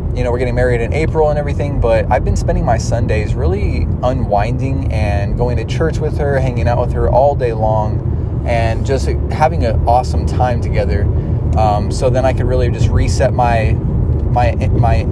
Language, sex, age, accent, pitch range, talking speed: English, male, 20-39, American, 105-120 Hz, 190 wpm